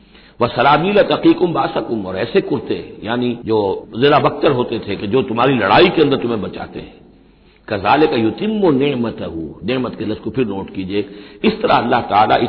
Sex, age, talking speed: male, 60-79, 185 wpm